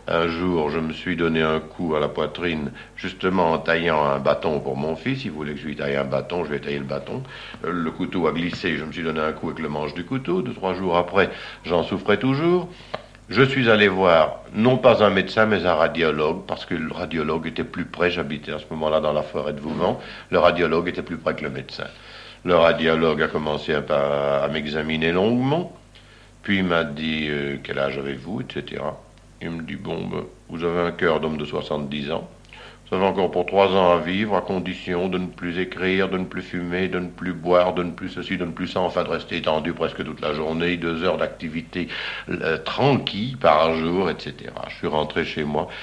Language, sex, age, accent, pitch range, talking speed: French, male, 60-79, French, 80-95 Hz, 225 wpm